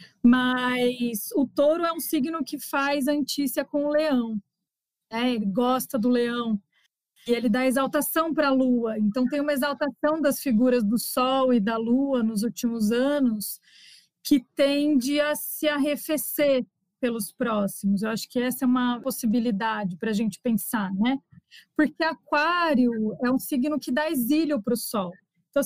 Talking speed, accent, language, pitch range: 165 wpm, Brazilian, Portuguese, 230-280 Hz